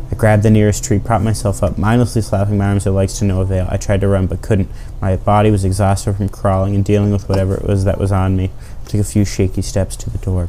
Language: English